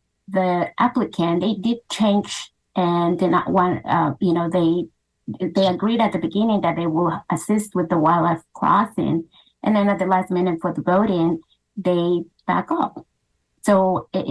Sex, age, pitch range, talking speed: female, 30-49, 170-200 Hz, 170 wpm